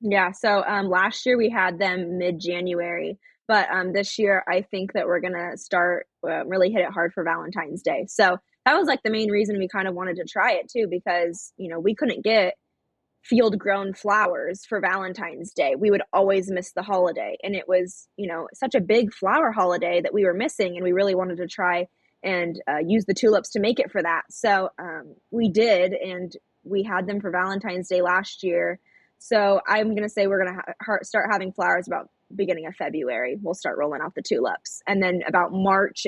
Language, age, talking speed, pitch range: English, 20-39, 220 wpm, 180-215 Hz